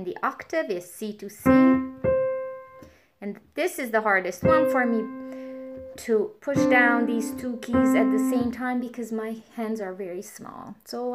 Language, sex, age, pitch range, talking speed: English, female, 20-39, 195-255 Hz, 165 wpm